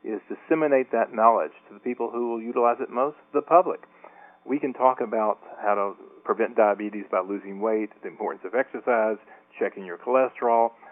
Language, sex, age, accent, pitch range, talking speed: English, male, 40-59, American, 105-140 Hz, 175 wpm